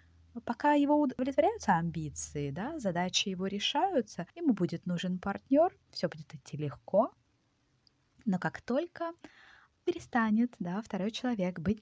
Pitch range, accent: 155-235 Hz, native